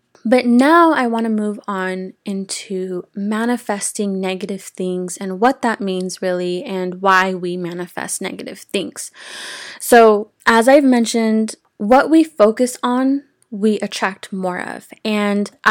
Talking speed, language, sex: 135 wpm, English, female